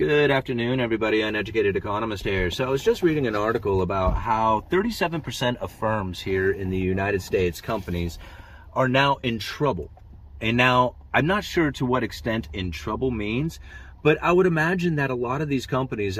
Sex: male